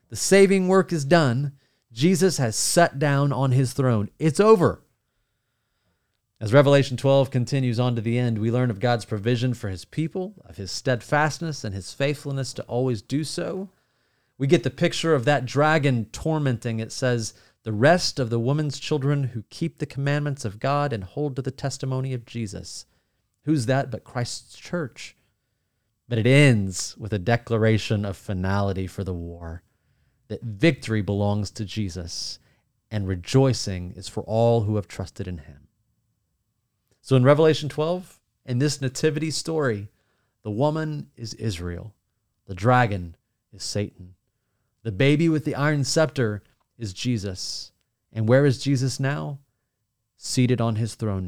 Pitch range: 105-140 Hz